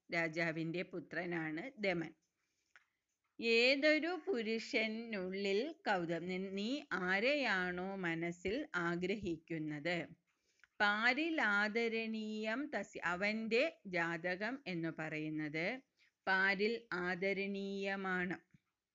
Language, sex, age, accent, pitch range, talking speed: Malayalam, female, 30-49, native, 170-215 Hz, 55 wpm